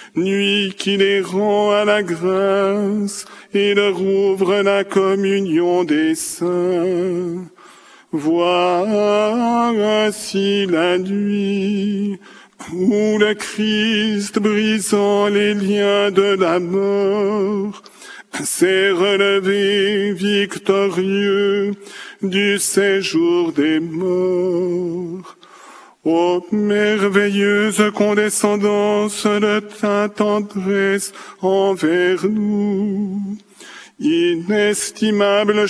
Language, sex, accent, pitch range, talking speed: French, male, French, 195-210 Hz, 70 wpm